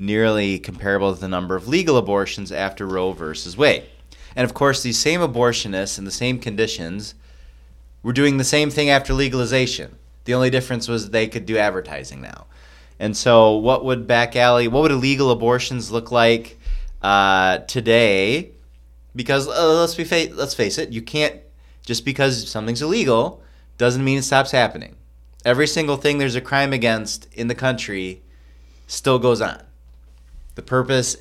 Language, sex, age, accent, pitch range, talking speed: English, male, 30-49, American, 85-130 Hz, 160 wpm